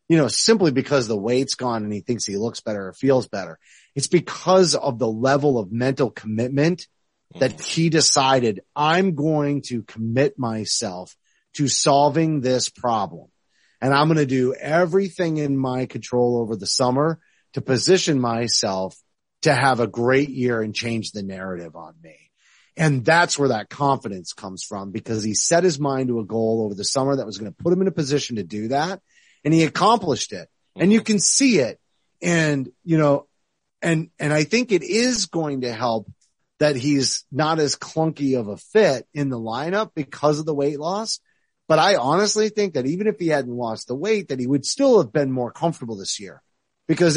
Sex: male